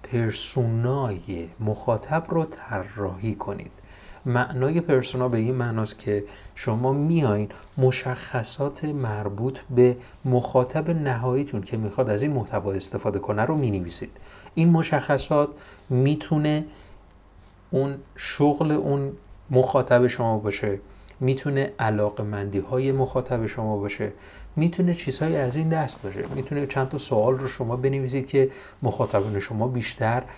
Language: Persian